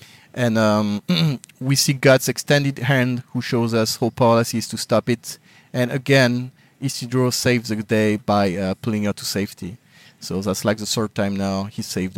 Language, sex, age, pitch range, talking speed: English, male, 30-49, 110-130 Hz, 180 wpm